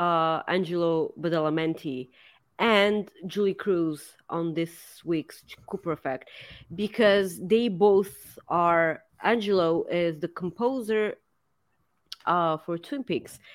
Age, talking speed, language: 30-49, 100 wpm, English